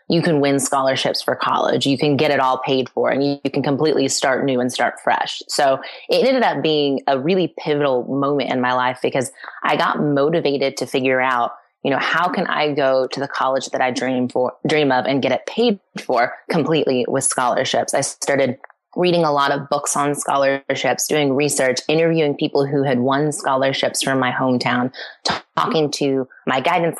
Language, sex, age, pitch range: English, female, 20-39, 125-145 Hz